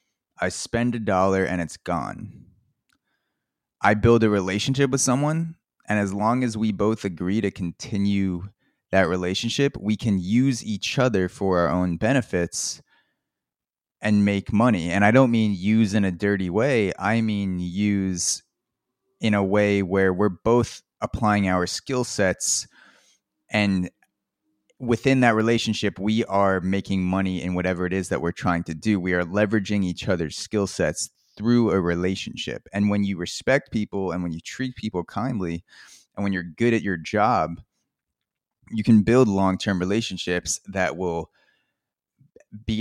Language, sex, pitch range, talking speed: English, male, 95-110 Hz, 155 wpm